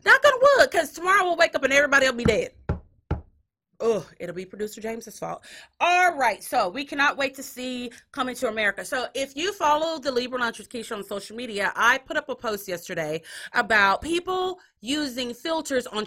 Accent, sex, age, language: American, female, 30-49, English